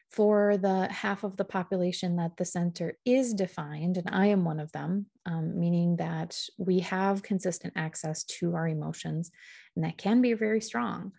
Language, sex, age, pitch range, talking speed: English, female, 30-49, 165-195 Hz, 175 wpm